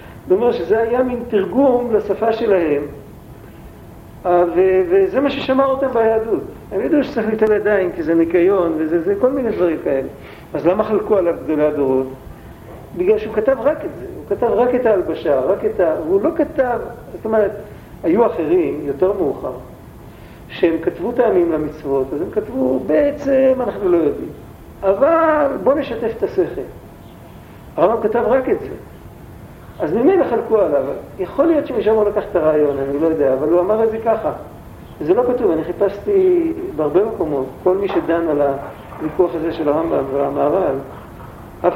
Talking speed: 160 wpm